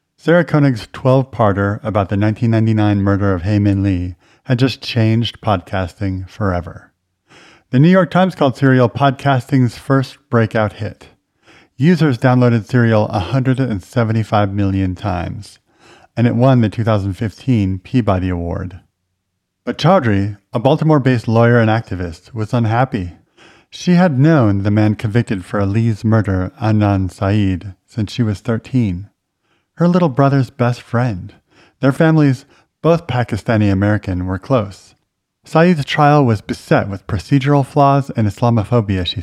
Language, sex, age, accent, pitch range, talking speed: English, male, 50-69, American, 100-135 Hz, 130 wpm